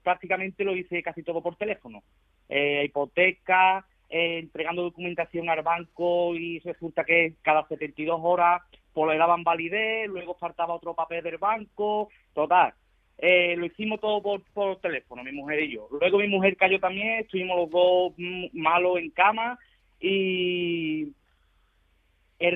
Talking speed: 145 wpm